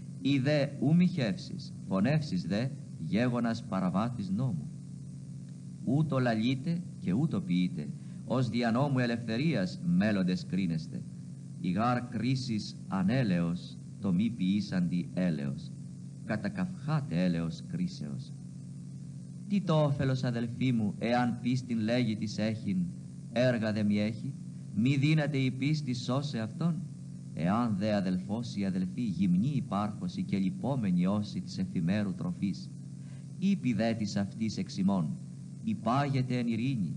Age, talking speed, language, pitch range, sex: 50-69, 110 wpm, Greek, 115-165 Hz, male